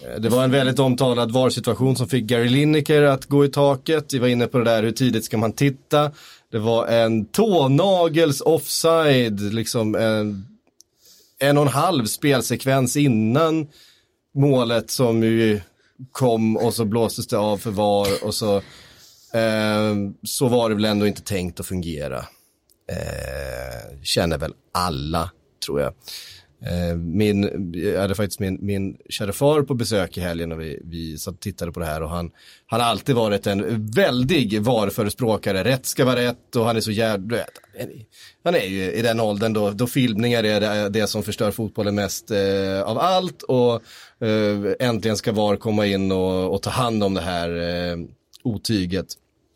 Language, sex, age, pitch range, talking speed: Swedish, male, 30-49, 100-125 Hz, 170 wpm